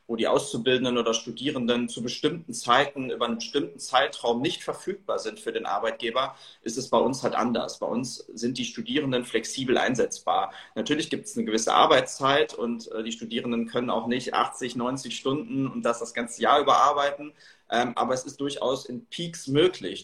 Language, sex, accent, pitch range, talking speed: German, male, German, 115-135 Hz, 175 wpm